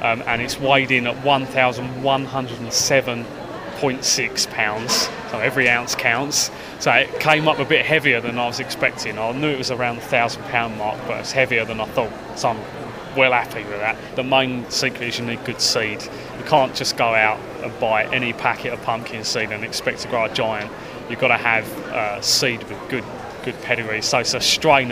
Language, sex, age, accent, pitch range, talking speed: English, male, 20-39, British, 115-130 Hz, 200 wpm